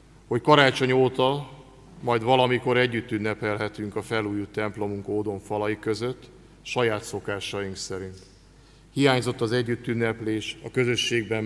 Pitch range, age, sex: 105-125 Hz, 50-69, male